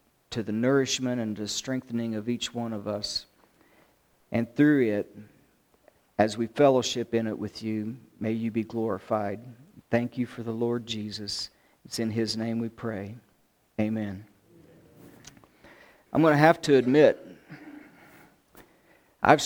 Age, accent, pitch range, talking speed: 50-69, American, 115-150 Hz, 140 wpm